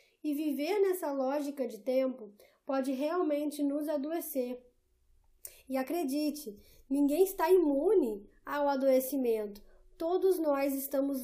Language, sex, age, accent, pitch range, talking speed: Portuguese, female, 10-29, Brazilian, 265-345 Hz, 105 wpm